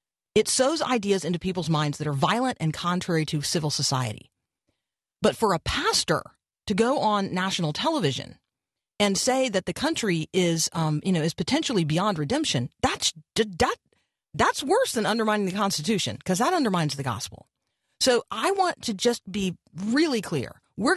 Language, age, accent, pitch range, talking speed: English, 40-59, American, 160-230 Hz, 165 wpm